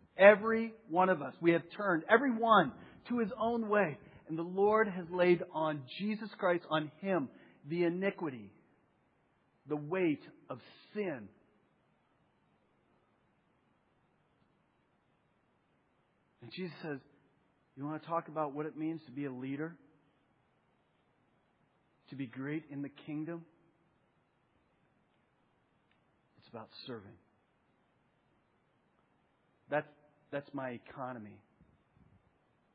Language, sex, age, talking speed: English, male, 40-59, 105 wpm